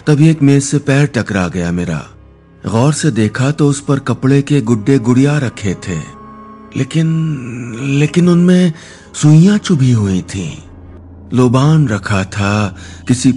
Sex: male